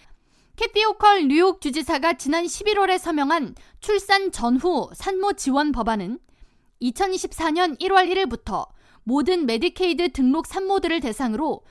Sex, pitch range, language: female, 265-370 Hz, Korean